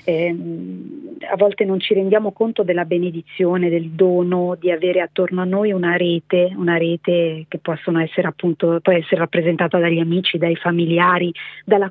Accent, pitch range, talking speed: native, 175-200 Hz, 140 wpm